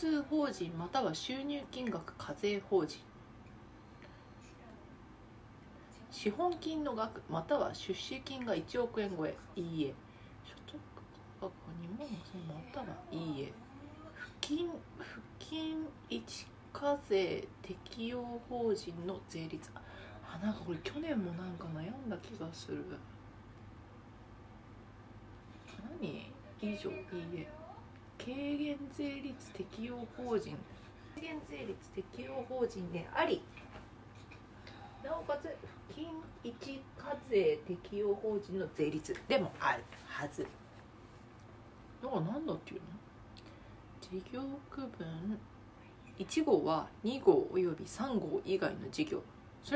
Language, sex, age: Japanese, female, 40-59